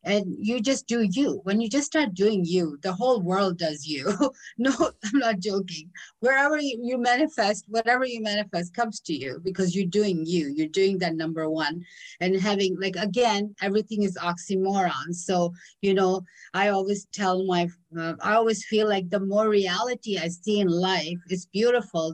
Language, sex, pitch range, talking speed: English, female, 175-220 Hz, 180 wpm